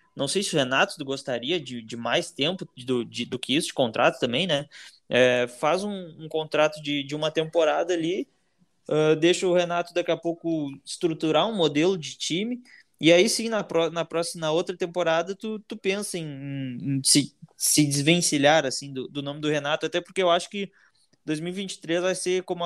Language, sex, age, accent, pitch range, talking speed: Portuguese, male, 20-39, Brazilian, 145-170 Hz, 200 wpm